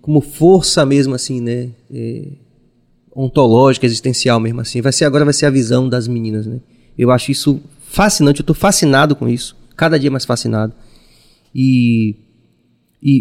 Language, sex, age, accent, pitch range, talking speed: Portuguese, male, 20-39, Brazilian, 125-145 Hz, 160 wpm